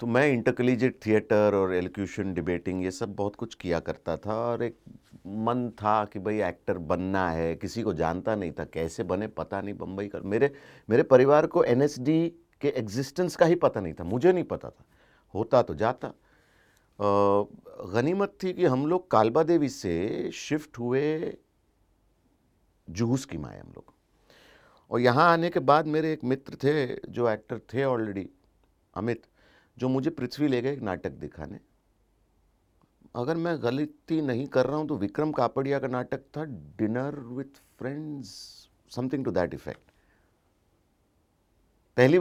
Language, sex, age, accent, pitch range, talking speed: English, male, 50-69, Indian, 100-140 Hz, 155 wpm